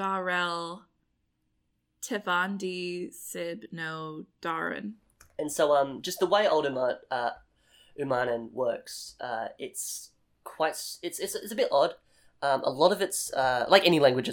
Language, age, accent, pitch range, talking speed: English, 20-39, Australian, 120-160 Hz, 135 wpm